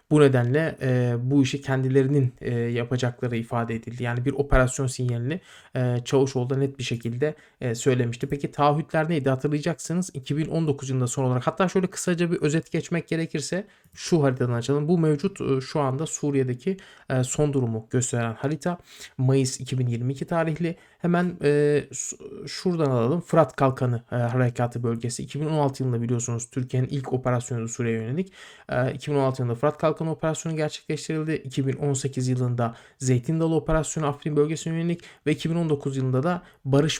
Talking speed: 145 wpm